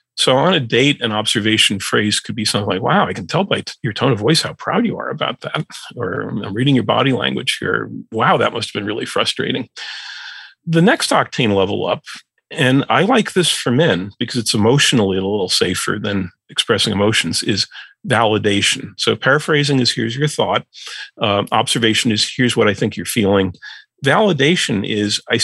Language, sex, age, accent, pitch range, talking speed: English, male, 40-59, American, 110-145 Hz, 190 wpm